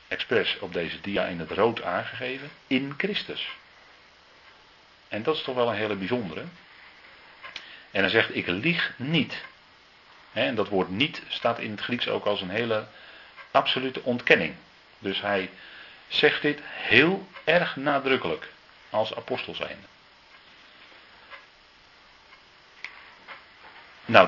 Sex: male